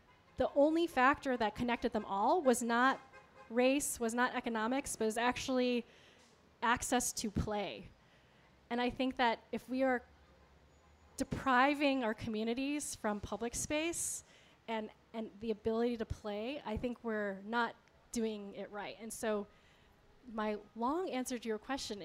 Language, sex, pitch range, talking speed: English, female, 205-250 Hz, 145 wpm